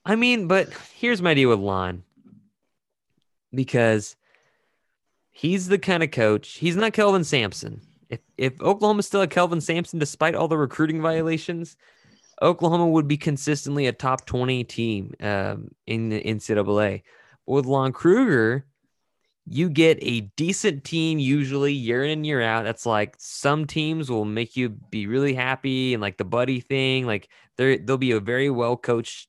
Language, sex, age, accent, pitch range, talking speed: English, male, 20-39, American, 115-155 Hz, 155 wpm